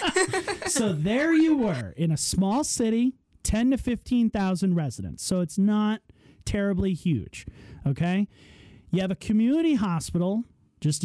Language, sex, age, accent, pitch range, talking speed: English, male, 30-49, American, 150-210 Hz, 130 wpm